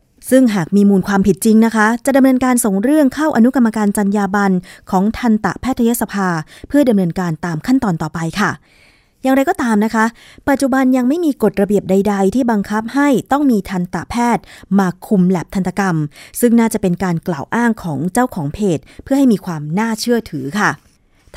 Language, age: Thai, 20-39